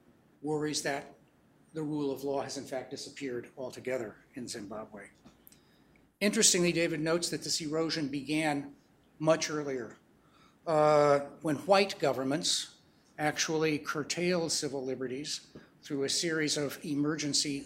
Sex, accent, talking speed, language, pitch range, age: male, American, 120 wpm, English, 140-160 Hz, 60-79